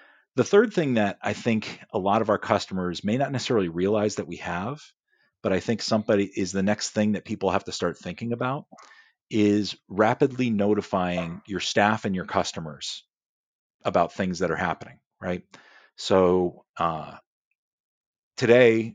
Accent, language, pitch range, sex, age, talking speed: American, English, 95-115 Hz, male, 40-59, 160 wpm